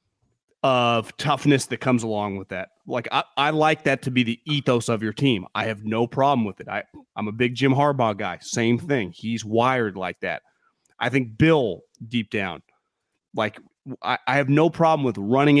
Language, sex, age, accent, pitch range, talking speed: English, male, 30-49, American, 110-145 Hz, 190 wpm